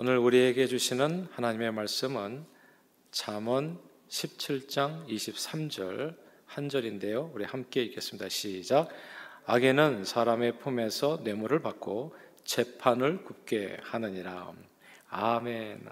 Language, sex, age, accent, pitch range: Korean, male, 40-59, native, 110-145 Hz